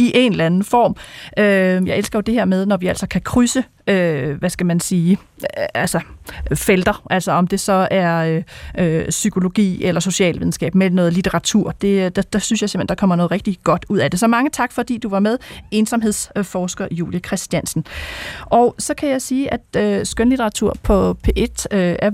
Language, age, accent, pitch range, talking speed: Danish, 30-49, native, 185-225 Hz, 180 wpm